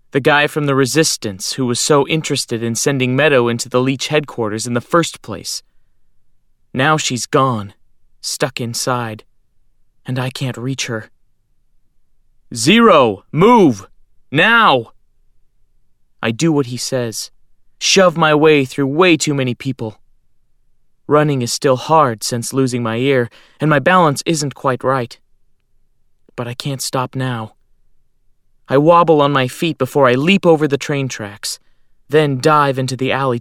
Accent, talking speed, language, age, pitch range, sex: American, 145 wpm, English, 30-49, 120-145 Hz, male